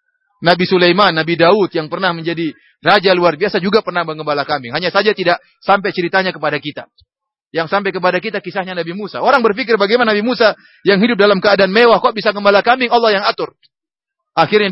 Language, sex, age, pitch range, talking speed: English, male, 30-49, 175-230 Hz, 190 wpm